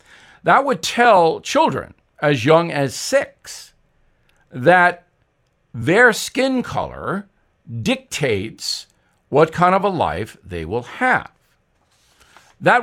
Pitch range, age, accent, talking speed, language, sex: 120-185 Hz, 60-79, American, 105 wpm, English, male